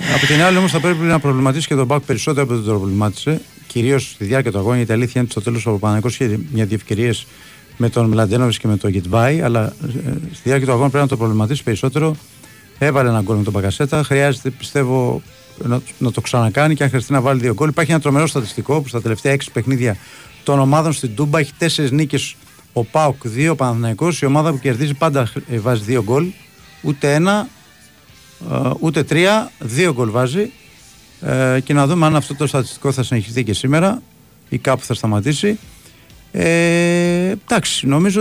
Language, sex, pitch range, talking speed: Greek, male, 120-150 Hz, 155 wpm